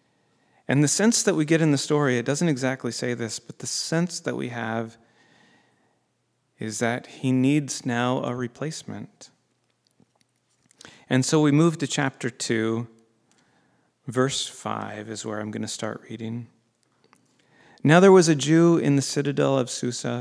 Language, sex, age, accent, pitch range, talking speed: English, male, 40-59, American, 115-135 Hz, 155 wpm